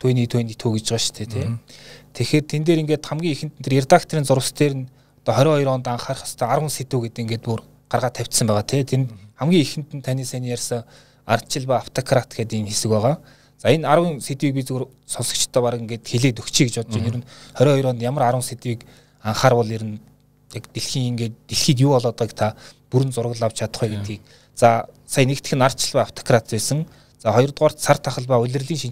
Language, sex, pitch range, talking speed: Russian, male, 115-140 Hz, 145 wpm